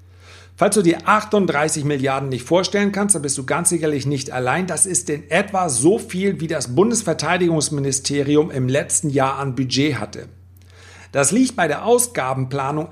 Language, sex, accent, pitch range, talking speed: German, male, German, 135-180 Hz, 165 wpm